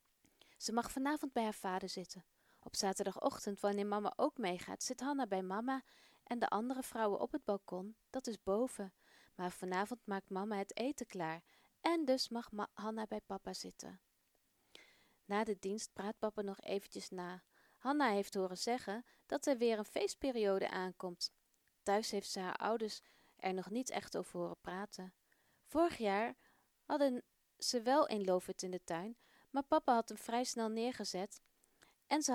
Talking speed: 170 wpm